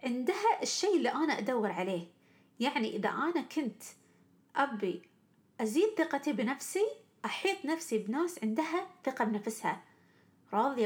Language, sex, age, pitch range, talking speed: Arabic, female, 30-49, 215-285 Hz, 115 wpm